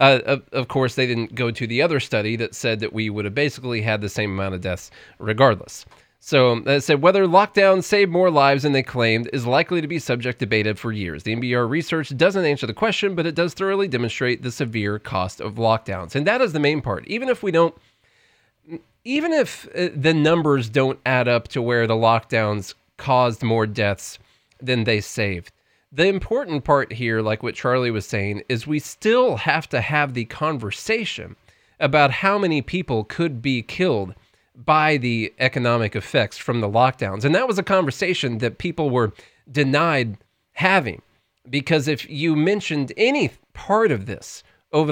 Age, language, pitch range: 30-49, English, 115-155 Hz